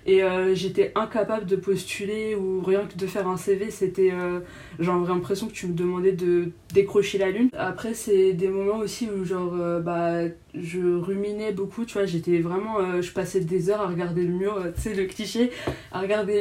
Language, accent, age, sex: French, French, 20-39, female